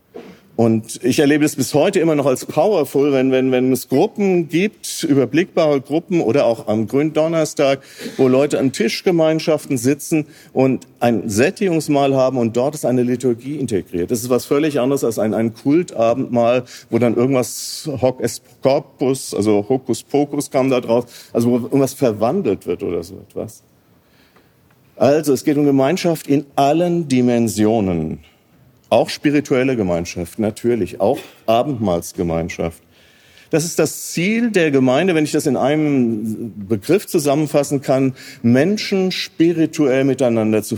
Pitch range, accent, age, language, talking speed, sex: 120-150 Hz, German, 50-69, German, 140 wpm, male